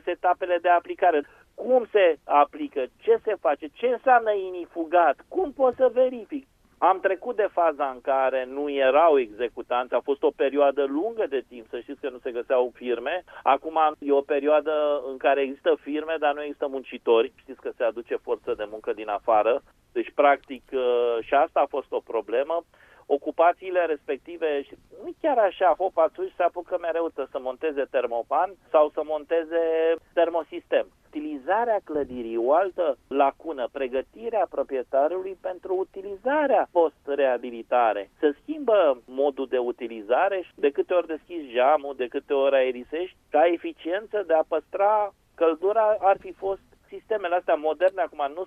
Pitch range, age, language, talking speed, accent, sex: 145-230 Hz, 30-49, Romanian, 155 wpm, native, male